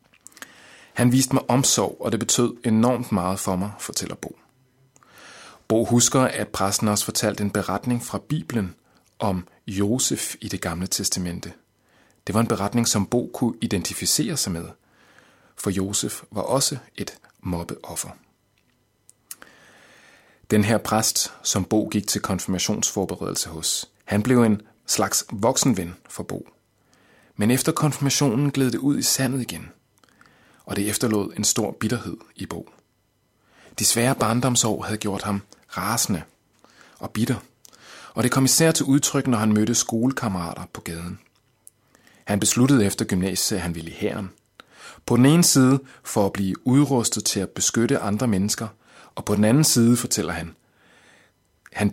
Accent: native